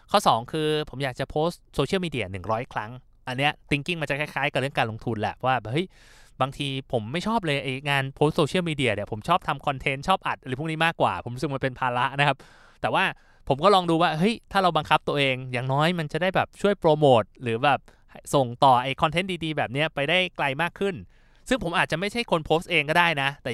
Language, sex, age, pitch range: Thai, male, 20-39, 125-165 Hz